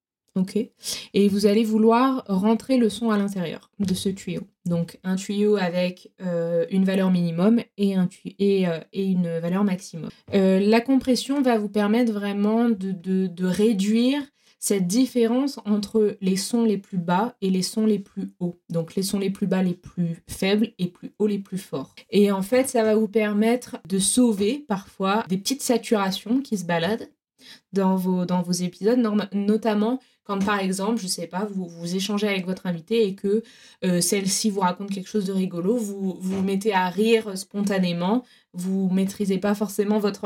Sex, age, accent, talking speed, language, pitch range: female, 20-39, French, 180 wpm, French, 185-220 Hz